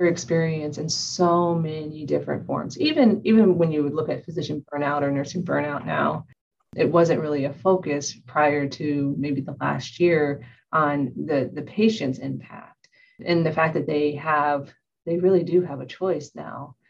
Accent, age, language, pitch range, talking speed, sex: American, 30-49, English, 140-165 Hz, 170 wpm, female